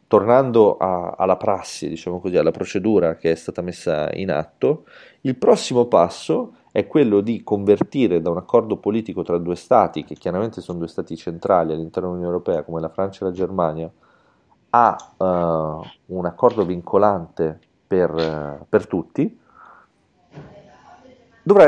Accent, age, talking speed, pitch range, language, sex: native, 30-49, 145 wpm, 80-95 Hz, Italian, male